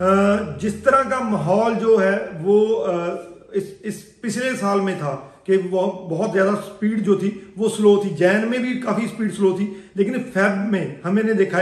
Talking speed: 175 wpm